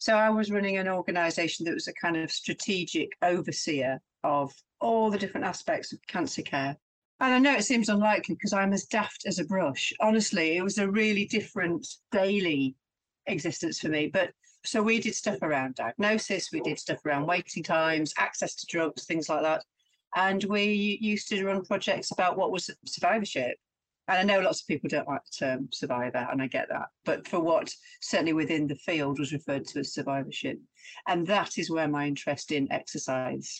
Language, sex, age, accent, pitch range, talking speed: English, female, 50-69, British, 145-200 Hz, 195 wpm